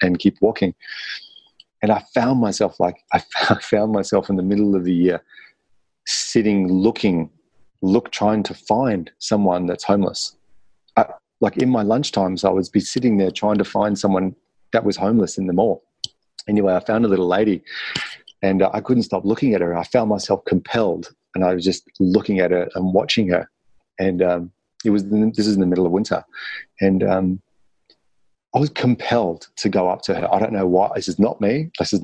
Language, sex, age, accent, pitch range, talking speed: English, male, 30-49, Australian, 90-105 Hz, 200 wpm